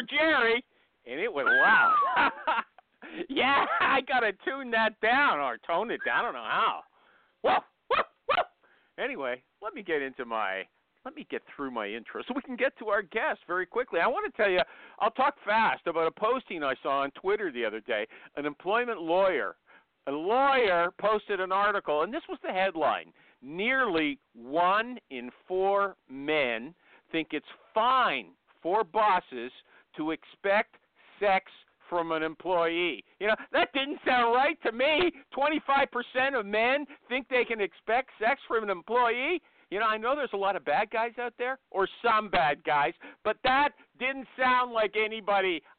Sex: male